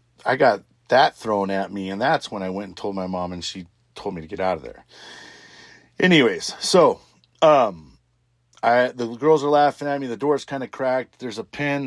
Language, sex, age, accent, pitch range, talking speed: English, male, 40-59, American, 100-135 Hz, 210 wpm